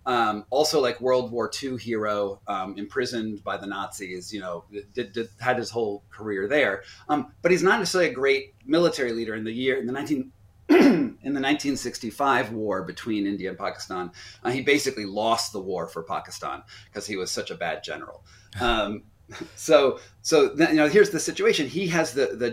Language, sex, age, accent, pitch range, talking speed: English, male, 30-49, American, 105-140 Hz, 190 wpm